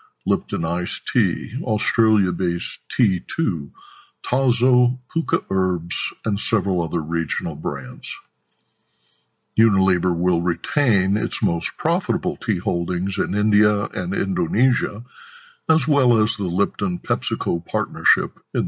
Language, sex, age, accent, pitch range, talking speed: English, male, 60-79, American, 90-130 Hz, 105 wpm